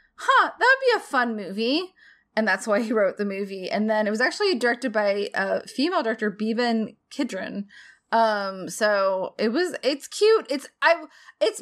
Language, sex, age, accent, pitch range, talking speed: English, female, 20-39, American, 215-265 Hz, 185 wpm